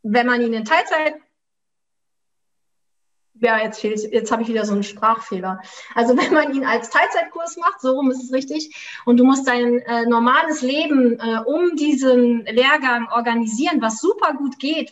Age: 30-49